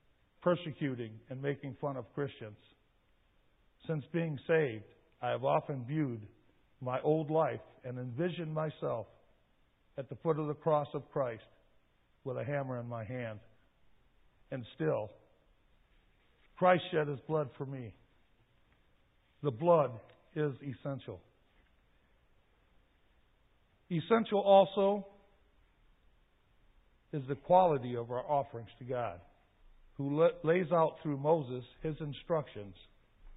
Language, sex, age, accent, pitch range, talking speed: English, male, 50-69, American, 120-155 Hz, 110 wpm